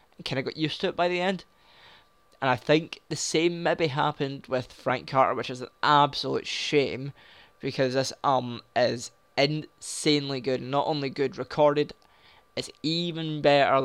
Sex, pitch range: male, 130-150 Hz